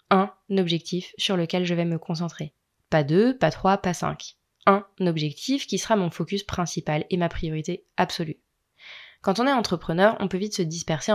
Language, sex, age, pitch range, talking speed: French, female, 20-39, 160-205 Hz, 185 wpm